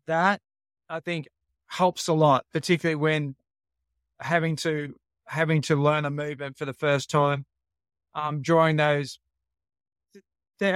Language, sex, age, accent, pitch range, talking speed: English, male, 20-39, Australian, 130-165 Hz, 130 wpm